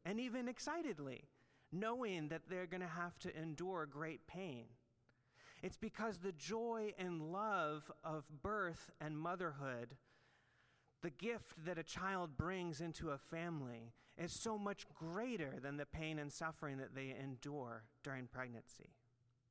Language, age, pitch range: English, 30-49, 135-180 Hz